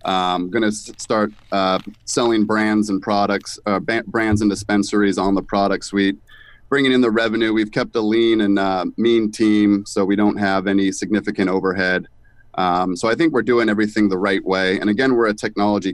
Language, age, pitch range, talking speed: English, 30-49, 95-110 Hz, 195 wpm